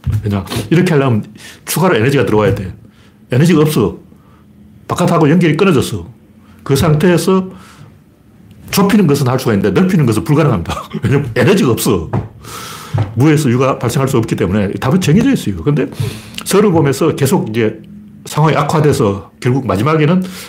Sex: male